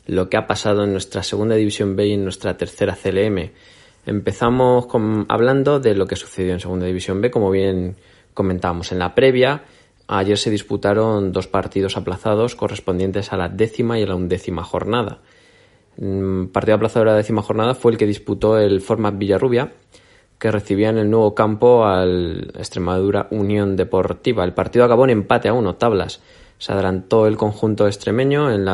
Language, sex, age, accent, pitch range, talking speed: Spanish, male, 20-39, Spanish, 95-110 Hz, 175 wpm